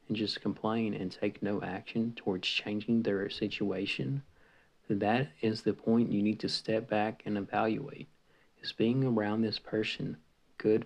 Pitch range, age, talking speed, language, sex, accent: 105-115 Hz, 40-59, 150 wpm, English, male, American